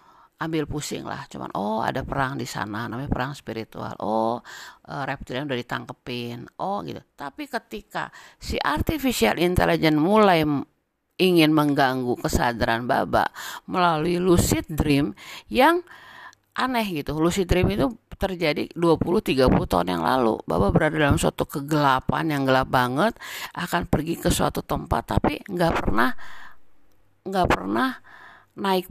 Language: Indonesian